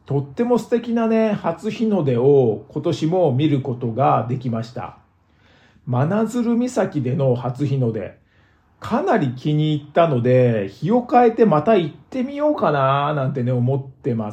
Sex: male